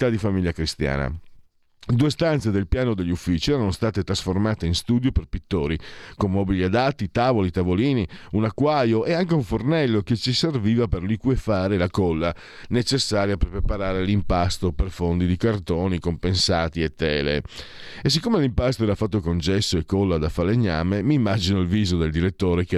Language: Italian